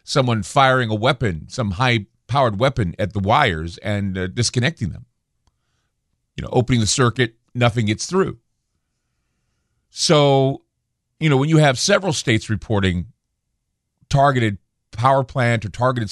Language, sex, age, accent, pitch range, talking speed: English, male, 50-69, American, 110-140 Hz, 135 wpm